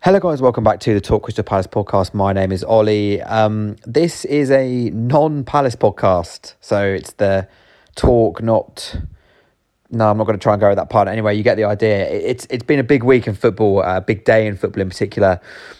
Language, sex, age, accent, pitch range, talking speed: English, male, 20-39, British, 95-110 Hz, 215 wpm